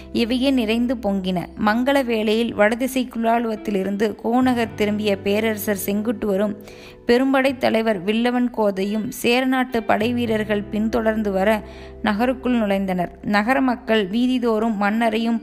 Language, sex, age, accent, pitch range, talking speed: Tamil, female, 20-39, native, 205-240 Hz, 95 wpm